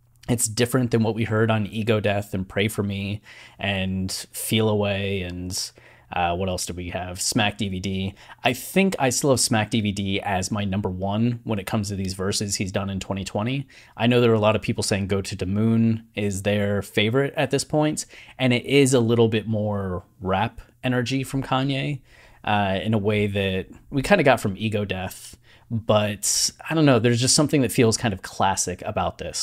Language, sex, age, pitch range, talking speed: English, male, 30-49, 100-120 Hz, 210 wpm